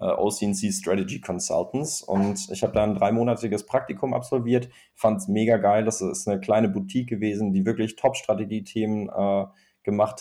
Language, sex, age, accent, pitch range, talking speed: German, male, 20-39, German, 95-110 Hz, 145 wpm